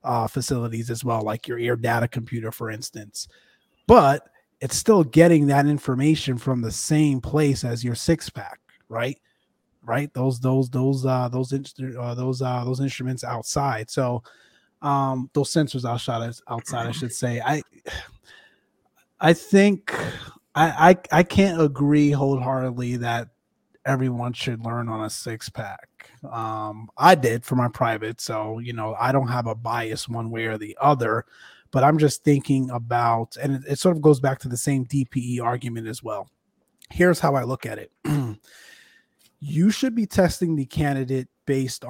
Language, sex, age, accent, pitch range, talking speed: English, male, 30-49, American, 115-140 Hz, 165 wpm